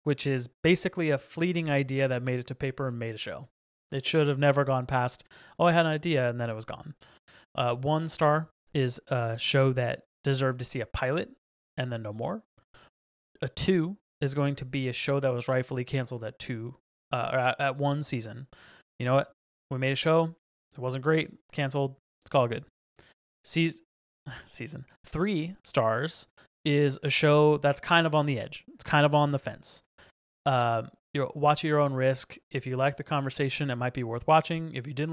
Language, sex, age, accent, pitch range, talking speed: English, male, 20-39, American, 125-150 Hz, 205 wpm